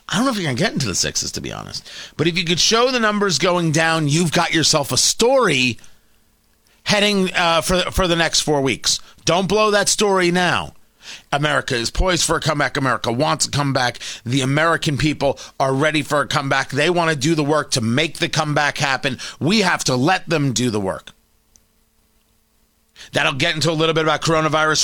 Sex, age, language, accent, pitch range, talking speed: male, 40-59, English, American, 150-195 Hz, 210 wpm